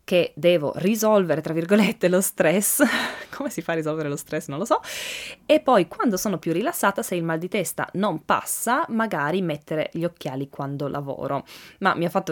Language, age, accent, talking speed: Italian, 20-39, native, 195 wpm